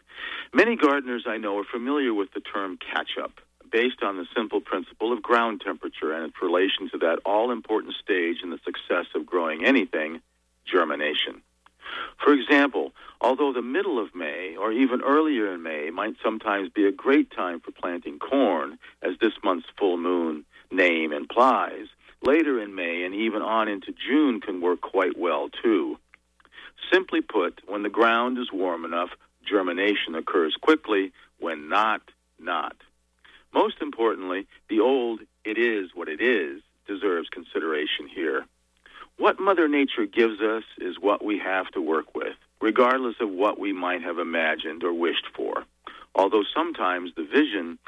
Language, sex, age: English, male, 50-69